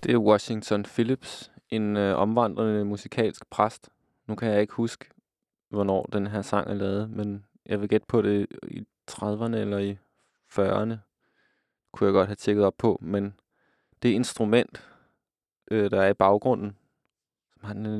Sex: male